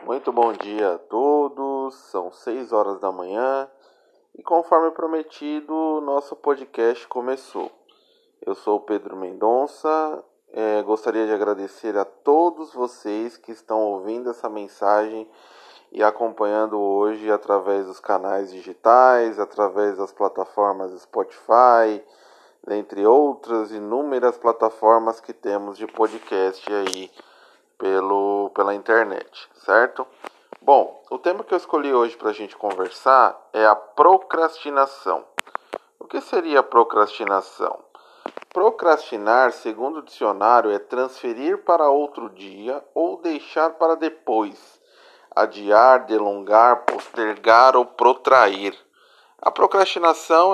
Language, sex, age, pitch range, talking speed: Portuguese, male, 20-39, 105-155 Hz, 110 wpm